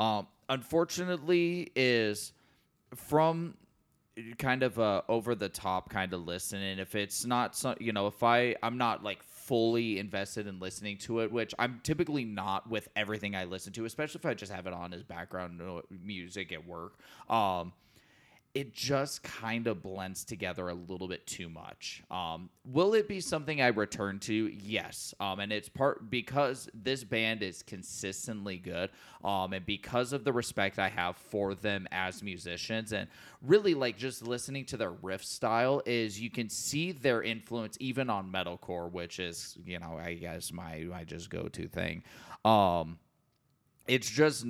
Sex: male